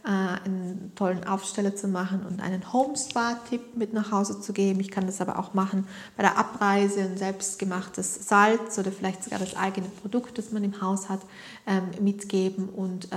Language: German